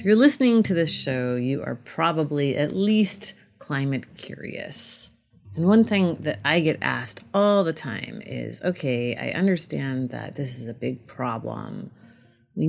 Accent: American